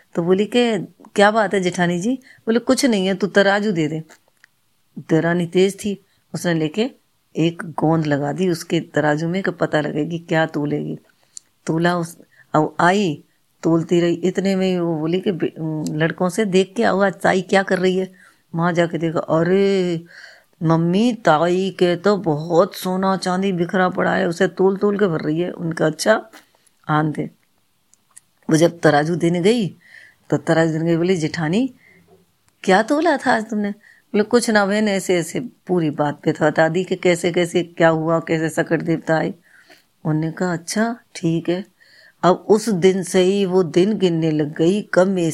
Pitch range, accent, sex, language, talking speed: 160-195 Hz, native, female, Hindi, 165 wpm